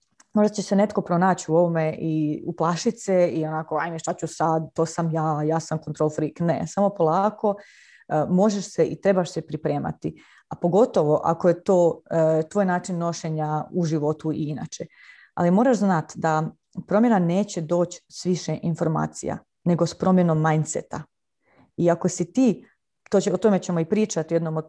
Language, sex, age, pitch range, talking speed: Croatian, female, 30-49, 165-215 Hz, 175 wpm